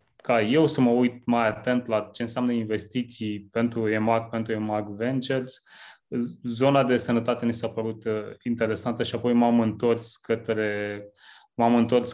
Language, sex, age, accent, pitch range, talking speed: Romanian, male, 20-39, native, 110-125 Hz, 155 wpm